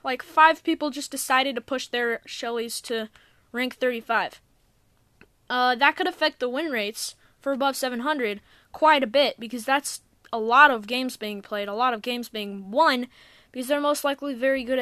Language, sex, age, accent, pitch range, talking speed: English, female, 10-29, American, 235-295 Hz, 180 wpm